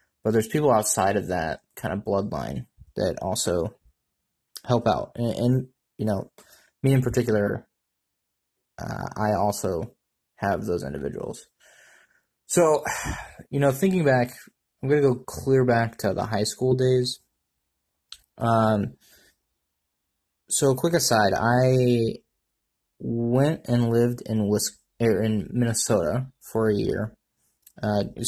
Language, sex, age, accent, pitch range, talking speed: English, male, 20-39, American, 100-125 Hz, 125 wpm